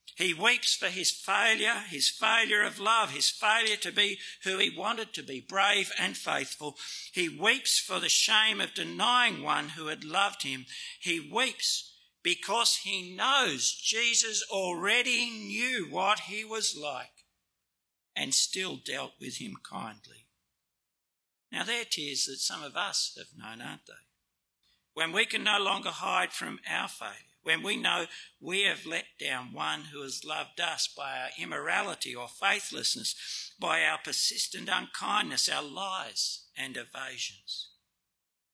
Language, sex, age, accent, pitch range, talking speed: English, male, 60-79, Australian, 170-225 Hz, 150 wpm